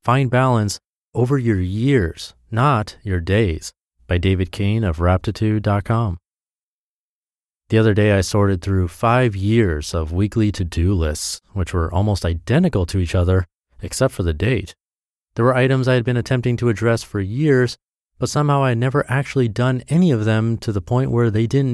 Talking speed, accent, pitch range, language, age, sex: 175 wpm, American, 90-120 Hz, English, 30-49, male